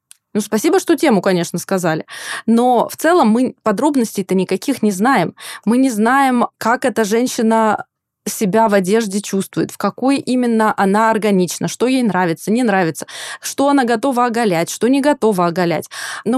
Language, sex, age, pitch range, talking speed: Russian, female, 20-39, 185-245 Hz, 160 wpm